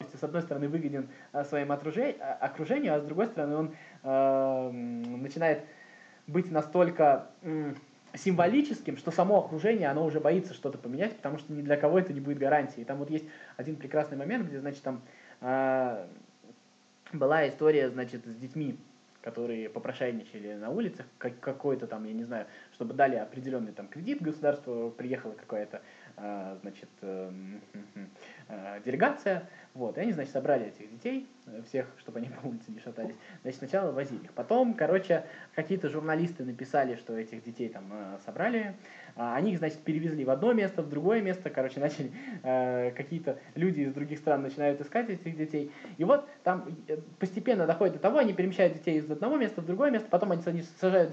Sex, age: male, 20-39